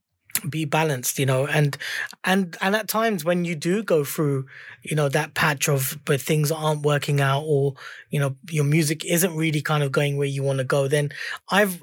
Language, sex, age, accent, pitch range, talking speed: English, male, 20-39, British, 145-180 Hz, 210 wpm